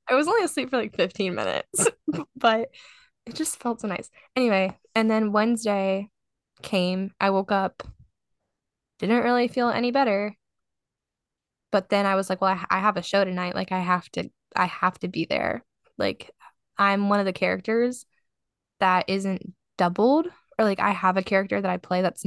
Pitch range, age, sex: 185-225 Hz, 10-29, female